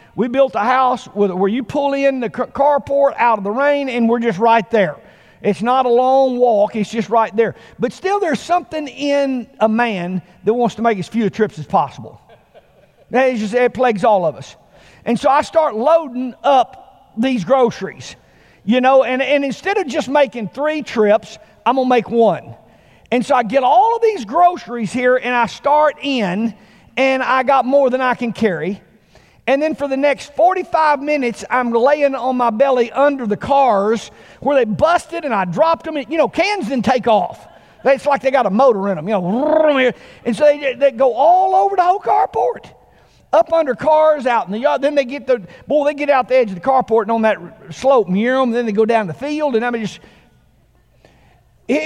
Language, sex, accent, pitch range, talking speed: English, male, American, 225-285 Hz, 205 wpm